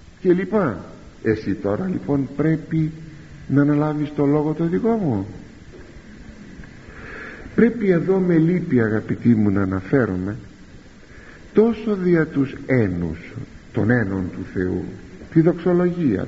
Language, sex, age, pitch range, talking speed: Greek, male, 50-69, 105-160 Hz, 110 wpm